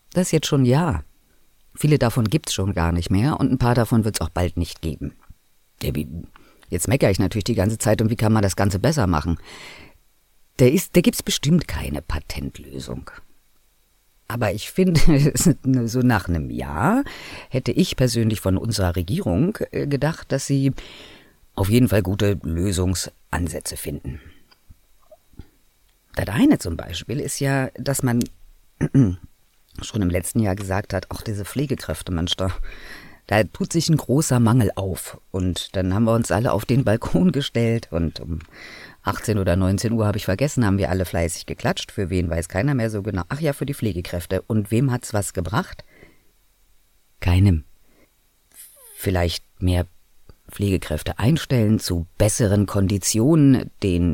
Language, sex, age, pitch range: German, female, 50-69, 85-120 Hz